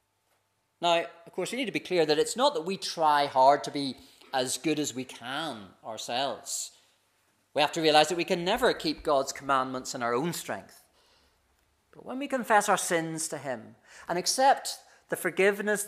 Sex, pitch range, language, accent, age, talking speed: male, 160-205 Hz, English, British, 40-59, 190 wpm